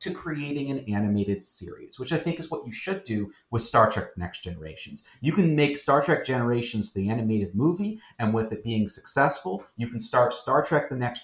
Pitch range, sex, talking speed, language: 100-135 Hz, male, 210 wpm, English